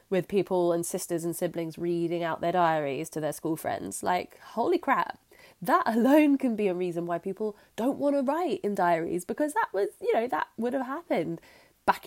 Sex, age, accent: female, 20-39, British